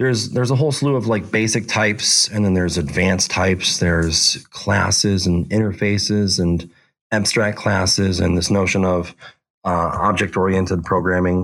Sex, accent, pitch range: male, American, 85-100 Hz